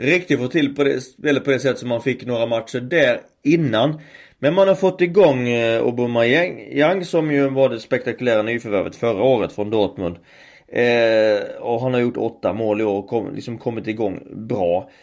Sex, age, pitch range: male, 30-49, 110-140 Hz